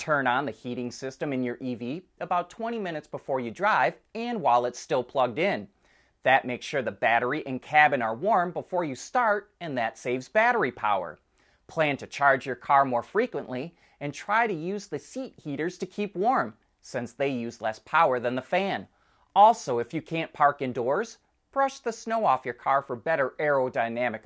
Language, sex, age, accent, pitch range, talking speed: English, male, 30-49, American, 125-185 Hz, 190 wpm